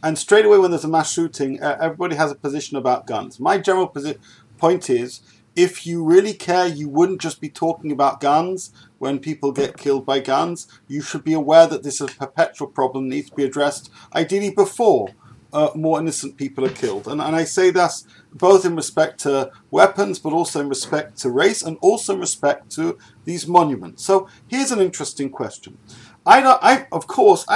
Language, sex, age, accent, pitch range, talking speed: English, male, 40-59, British, 145-190 Hz, 200 wpm